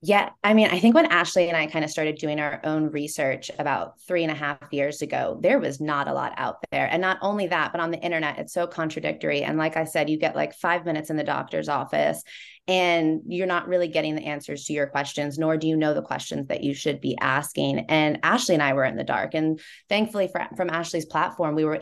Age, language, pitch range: 20-39, English, 145-165 Hz